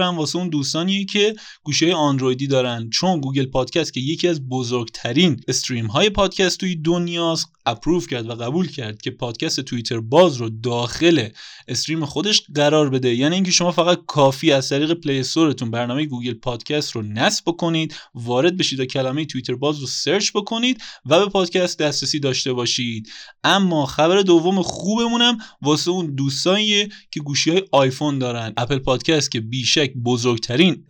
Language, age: Persian, 20-39